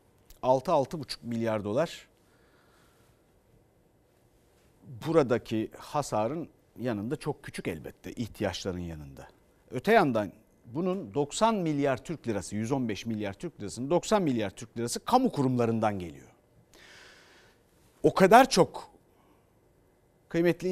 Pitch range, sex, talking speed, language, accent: 115-165 Hz, male, 100 wpm, Turkish, native